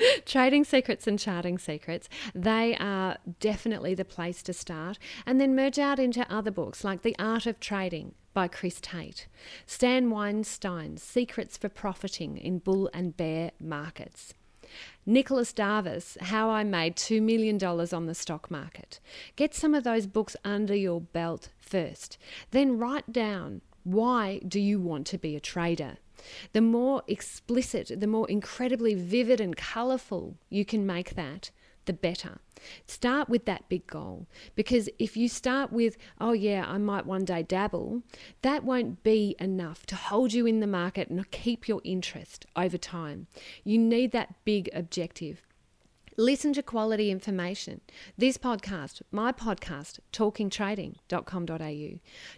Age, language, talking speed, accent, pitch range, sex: 40-59, English, 150 wpm, Australian, 180-235 Hz, female